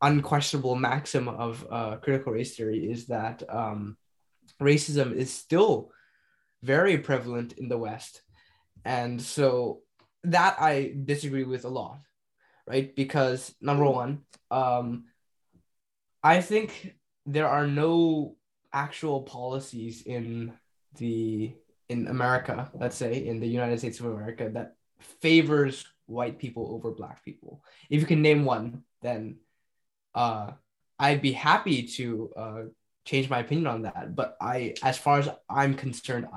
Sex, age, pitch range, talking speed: male, 10-29, 120-140 Hz, 130 wpm